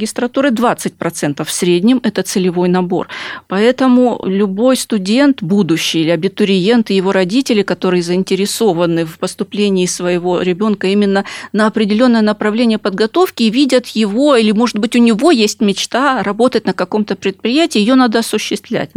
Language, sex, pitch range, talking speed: Russian, female, 180-245 Hz, 135 wpm